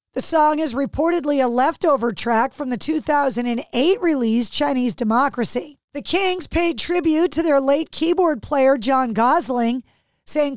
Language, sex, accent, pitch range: English, female, American, 250-300 Hz